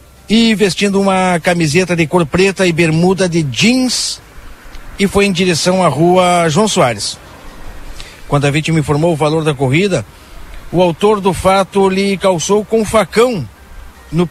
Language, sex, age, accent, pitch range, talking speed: Portuguese, male, 50-69, Brazilian, 140-185 Hz, 150 wpm